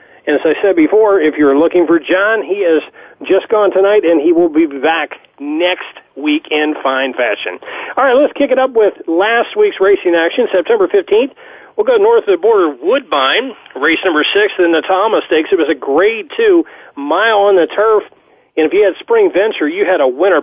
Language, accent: English, American